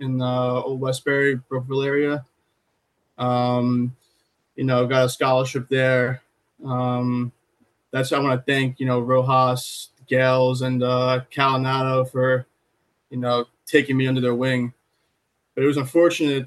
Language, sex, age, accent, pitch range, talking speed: English, male, 20-39, American, 125-135 Hz, 135 wpm